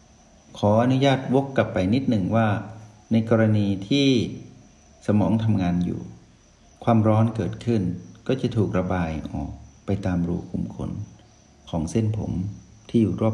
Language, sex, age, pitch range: Thai, male, 60-79, 95-115 Hz